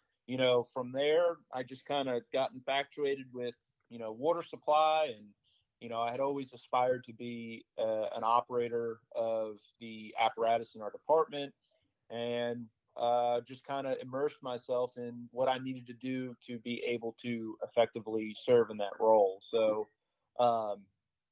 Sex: male